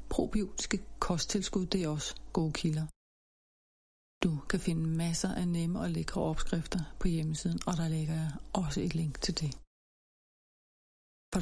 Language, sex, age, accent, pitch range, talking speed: Danish, female, 30-49, native, 160-180 Hz, 145 wpm